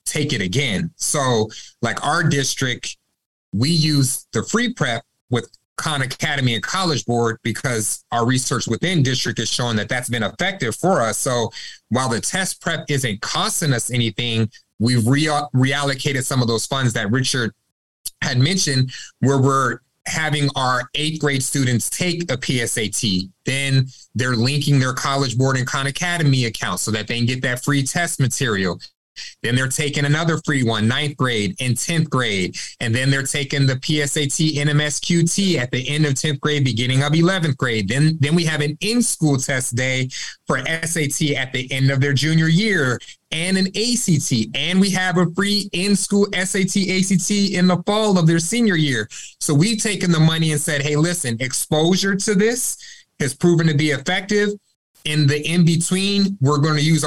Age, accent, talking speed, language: 30-49, American, 175 wpm, English